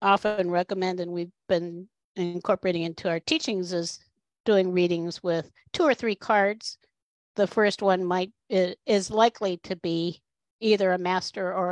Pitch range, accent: 170-200 Hz, American